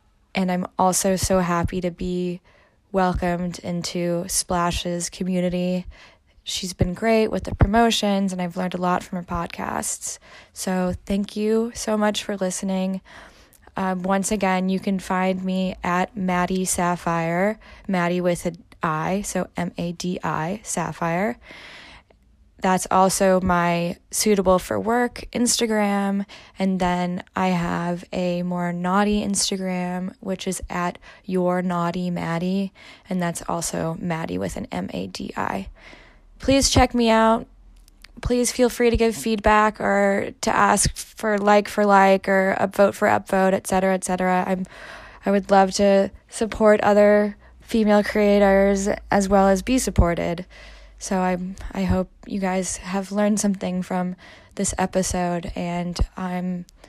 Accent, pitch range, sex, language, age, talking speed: American, 180-205 Hz, female, English, 10-29, 140 wpm